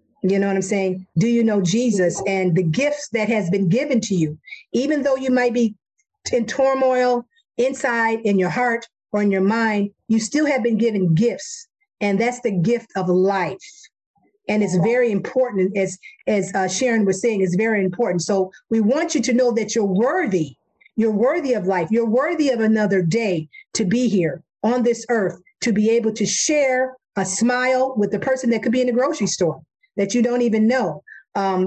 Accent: American